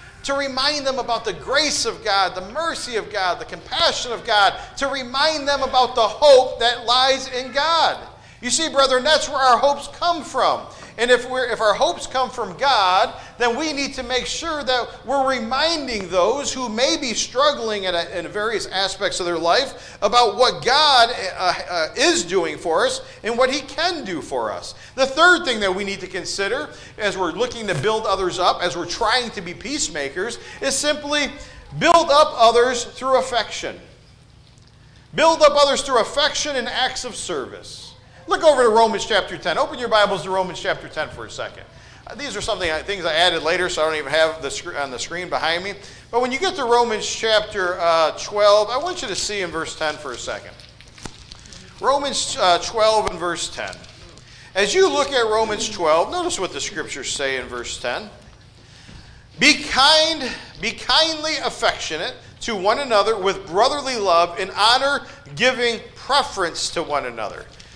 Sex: male